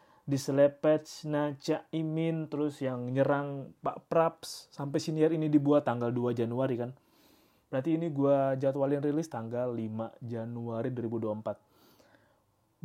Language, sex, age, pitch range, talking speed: Indonesian, male, 20-39, 130-160 Hz, 115 wpm